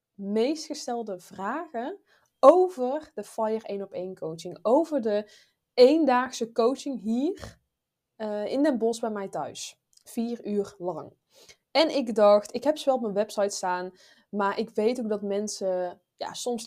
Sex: female